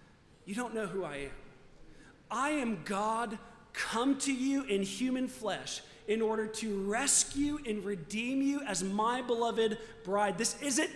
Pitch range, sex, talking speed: 190-255 Hz, male, 155 wpm